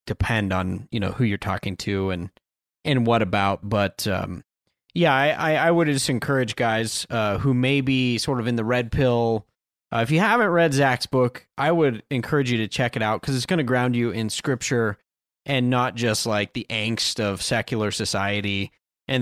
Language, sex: English, male